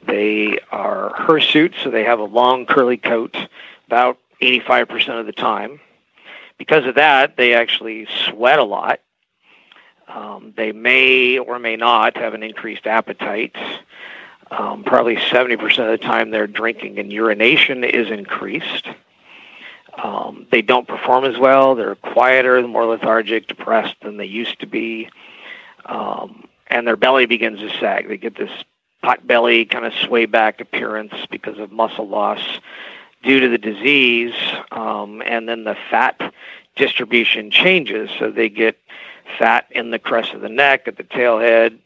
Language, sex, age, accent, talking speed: English, male, 50-69, American, 150 wpm